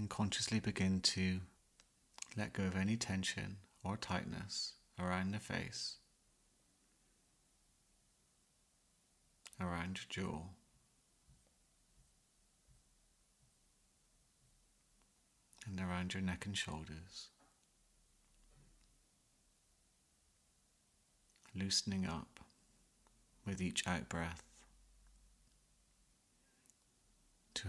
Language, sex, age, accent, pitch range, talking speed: English, male, 40-59, British, 85-100 Hz, 65 wpm